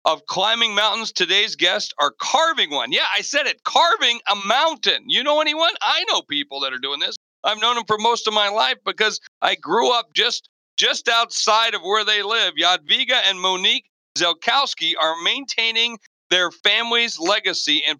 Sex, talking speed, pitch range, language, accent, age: male, 180 wpm, 170-225 Hz, English, American, 40-59